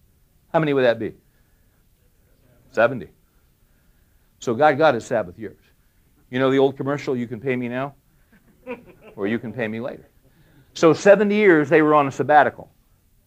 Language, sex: English, male